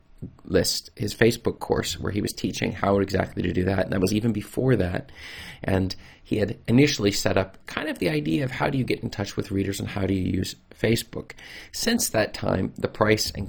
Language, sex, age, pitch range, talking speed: English, male, 30-49, 95-105 Hz, 220 wpm